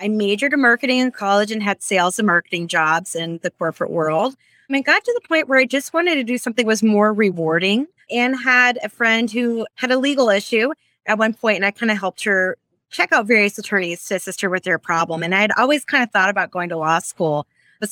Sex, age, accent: female, 20-39, American